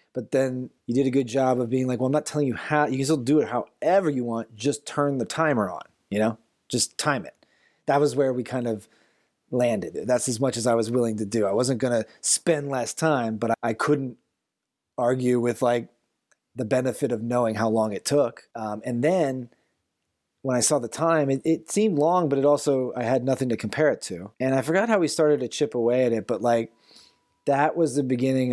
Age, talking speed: 30-49, 230 wpm